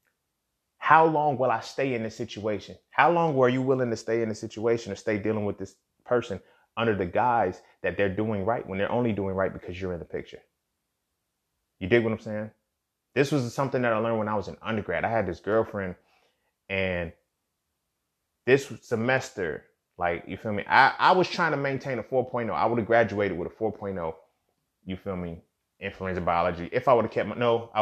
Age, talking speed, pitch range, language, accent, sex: 30-49, 205 wpm, 90-115 Hz, English, American, male